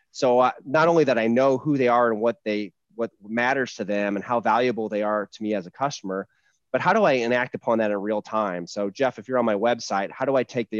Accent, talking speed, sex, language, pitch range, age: American, 270 wpm, male, English, 105-125 Hz, 30-49